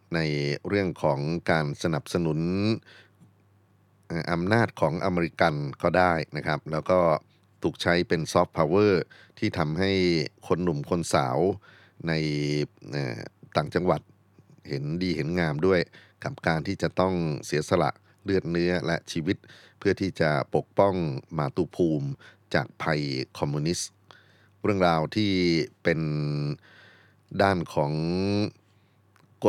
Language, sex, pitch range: Thai, male, 75-95 Hz